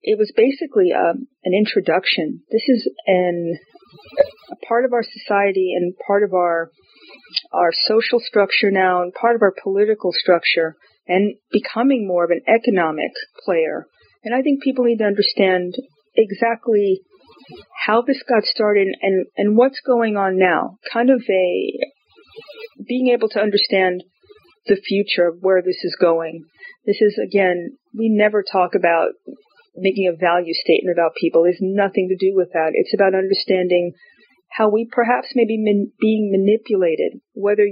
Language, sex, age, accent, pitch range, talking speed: English, female, 40-59, American, 185-240 Hz, 155 wpm